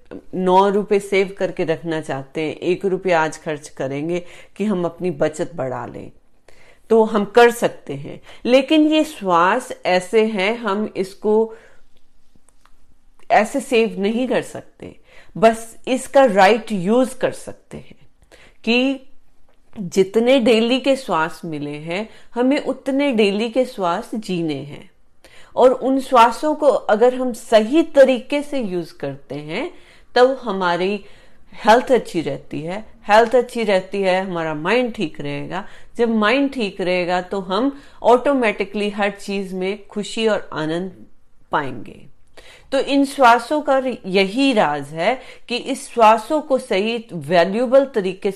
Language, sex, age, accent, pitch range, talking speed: Hindi, female, 40-59, native, 180-250 Hz, 135 wpm